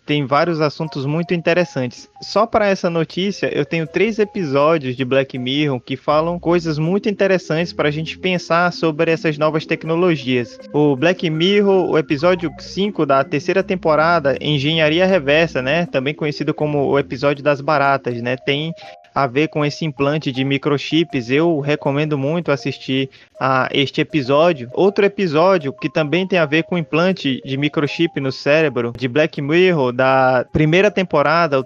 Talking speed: 160 wpm